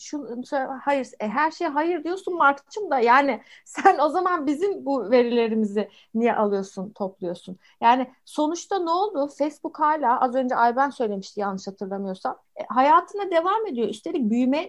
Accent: native